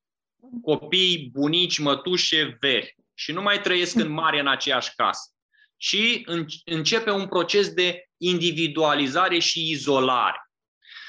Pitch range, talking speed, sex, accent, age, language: 140-185 Hz, 115 wpm, male, native, 20-39, Romanian